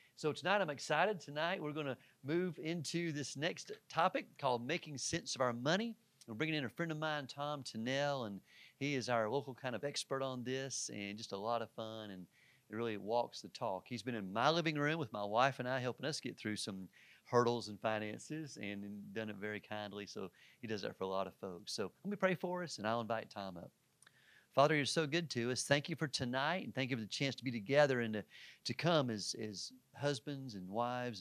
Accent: American